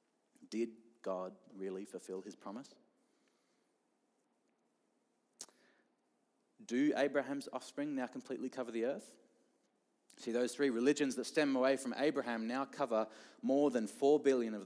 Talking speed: 125 wpm